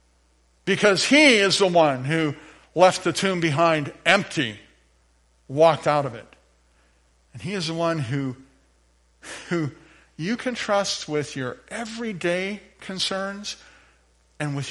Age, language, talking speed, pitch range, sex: 50-69, English, 125 wpm, 105-170 Hz, male